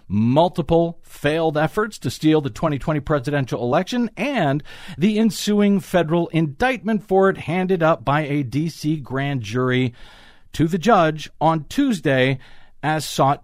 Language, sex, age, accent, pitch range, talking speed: English, male, 50-69, American, 125-185 Hz, 135 wpm